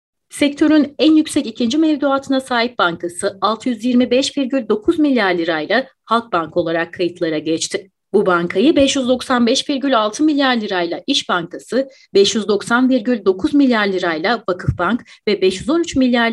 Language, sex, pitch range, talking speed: Turkish, female, 180-270 Hz, 105 wpm